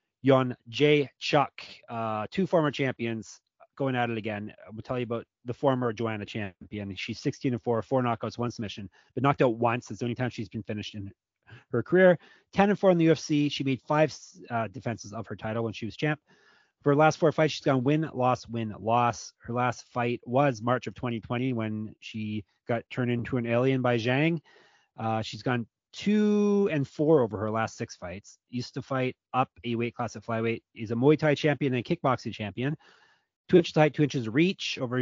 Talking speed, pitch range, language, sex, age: 210 wpm, 115-145 Hz, English, male, 30-49